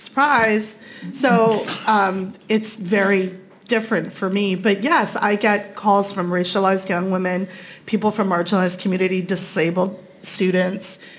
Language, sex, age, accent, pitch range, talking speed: English, female, 30-49, American, 190-230 Hz, 125 wpm